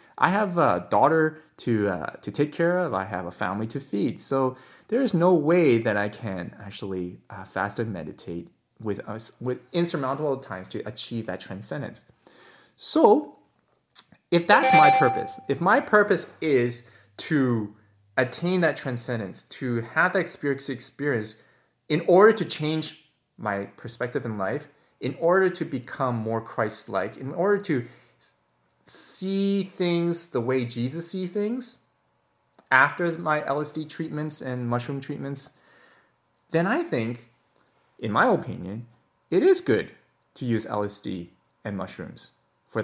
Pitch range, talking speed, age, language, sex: 115-160 Hz, 145 wpm, 20-39, English, male